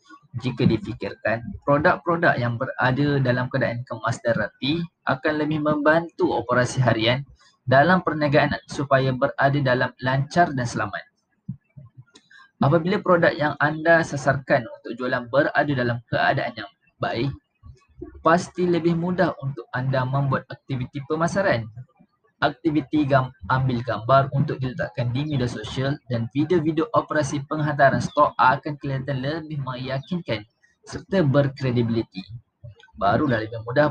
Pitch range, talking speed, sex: 125-155 Hz, 115 wpm, male